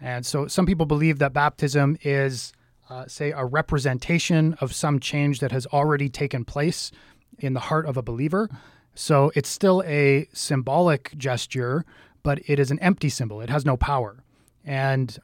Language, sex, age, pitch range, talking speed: English, male, 30-49, 130-160 Hz, 170 wpm